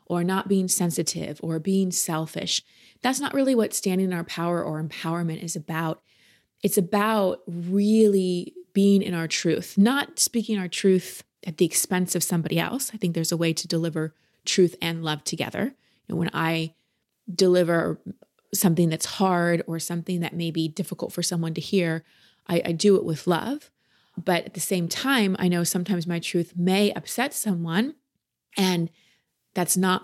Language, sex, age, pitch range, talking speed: English, female, 20-39, 165-195 Hz, 170 wpm